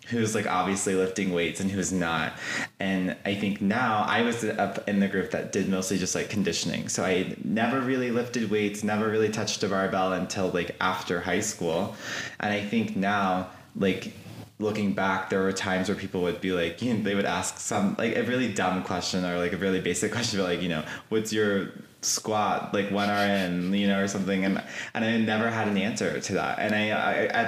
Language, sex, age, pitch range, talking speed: English, male, 20-39, 90-105 Hz, 215 wpm